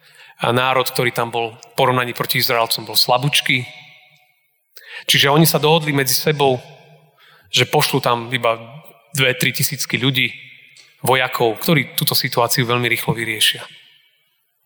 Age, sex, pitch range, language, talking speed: 30-49, male, 135-165 Hz, Slovak, 125 wpm